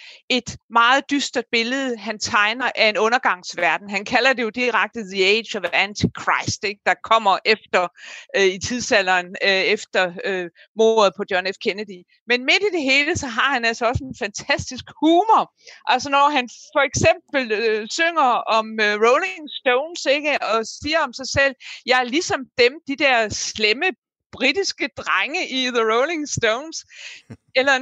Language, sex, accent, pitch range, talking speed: Danish, female, native, 210-290 Hz, 150 wpm